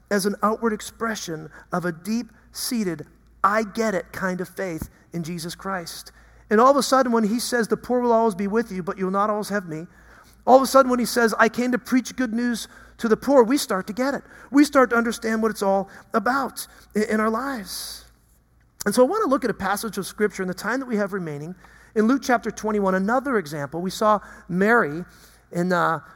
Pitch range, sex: 180-235 Hz, male